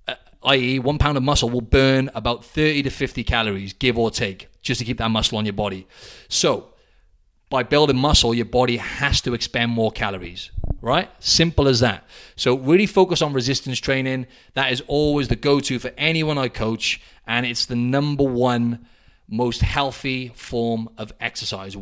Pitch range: 115-140 Hz